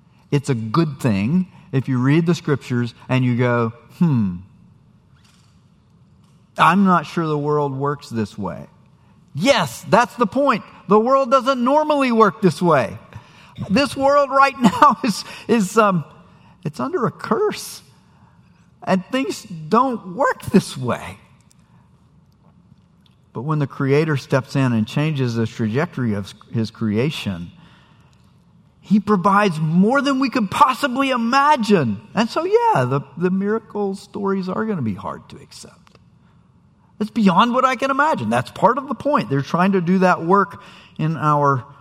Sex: male